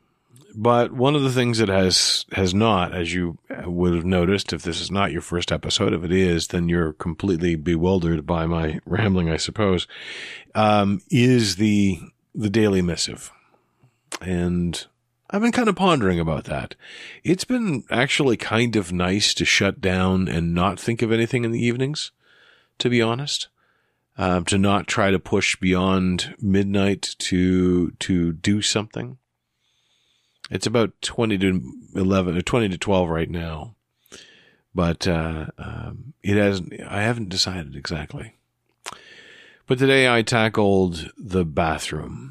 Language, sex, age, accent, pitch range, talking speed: English, male, 40-59, American, 90-120 Hz, 150 wpm